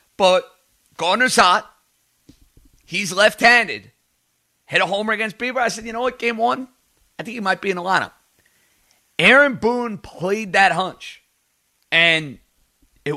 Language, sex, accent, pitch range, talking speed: English, male, American, 155-205 Hz, 145 wpm